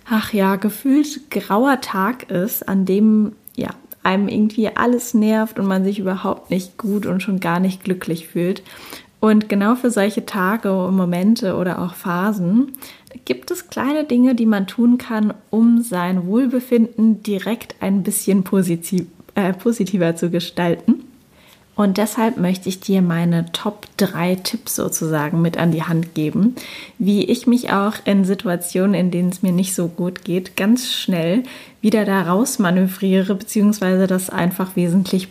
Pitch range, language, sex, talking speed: 185-225 Hz, German, female, 150 wpm